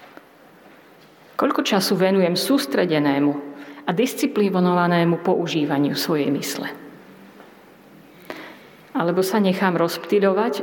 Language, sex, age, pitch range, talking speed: Slovak, female, 50-69, 175-215 Hz, 75 wpm